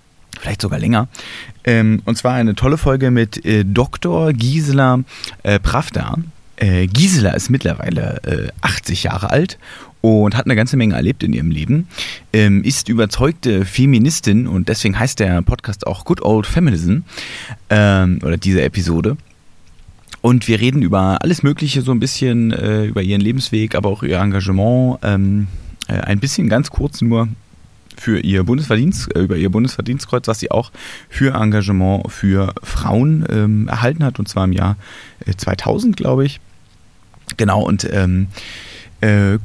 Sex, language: male, German